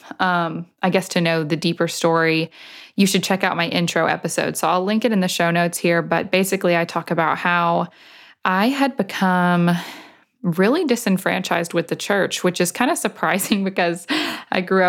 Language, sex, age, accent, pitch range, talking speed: English, female, 20-39, American, 170-185 Hz, 185 wpm